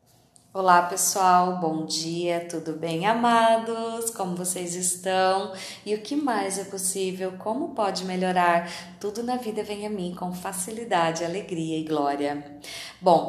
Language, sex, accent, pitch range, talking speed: Portuguese, female, Brazilian, 170-230 Hz, 140 wpm